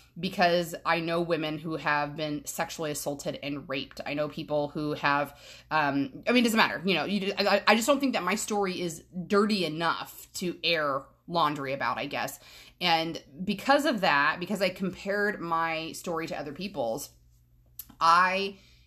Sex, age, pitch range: female, 20-39, 150-180 Hz